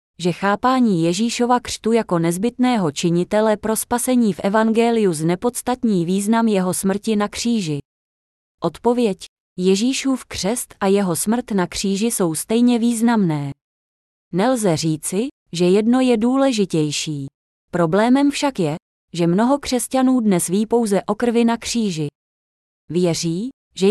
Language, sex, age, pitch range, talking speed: Czech, female, 20-39, 175-235 Hz, 125 wpm